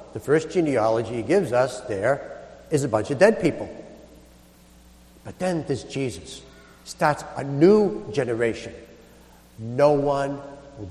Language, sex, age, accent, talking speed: English, male, 60-79, American, 130 wpm